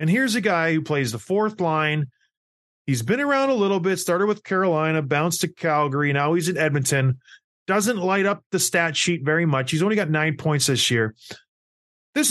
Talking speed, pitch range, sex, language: 200 wpm, 140-195 Hz, male, English